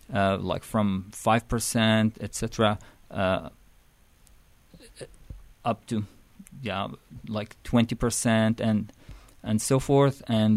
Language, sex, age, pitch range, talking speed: English, male, 40-59, 100-120 Hz, 95 wpm